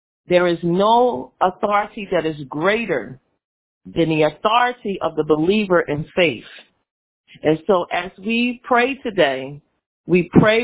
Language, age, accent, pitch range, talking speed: English, 40-59, American, 175-230 Hz, 130 wpm